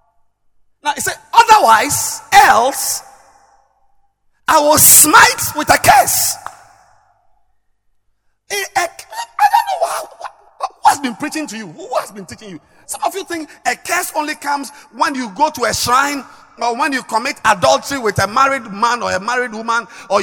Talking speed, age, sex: 170 wpm, 50-69, male